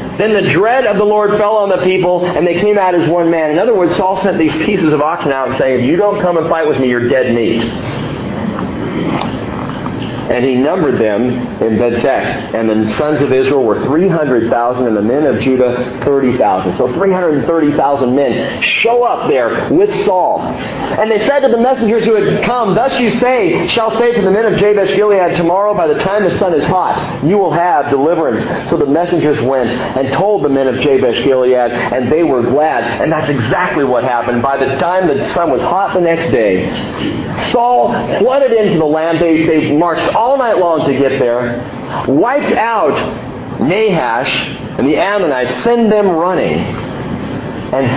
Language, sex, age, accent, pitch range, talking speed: English, male, 50-69, American, 125-200 Hz, 190 wpm